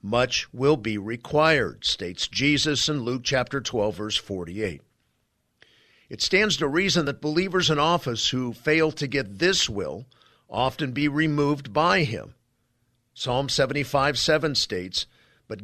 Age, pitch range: 50-69, 115-150 Hz